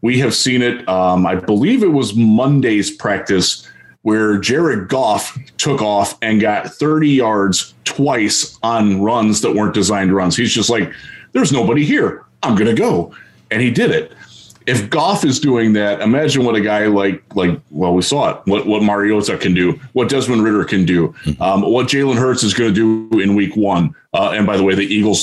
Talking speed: 200 wpm